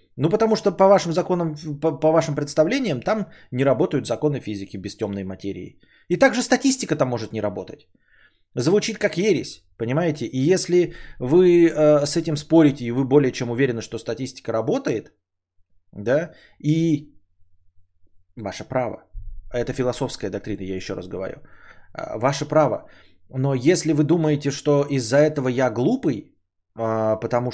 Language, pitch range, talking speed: Bulgarian, 105-155 Hz, 150 wpm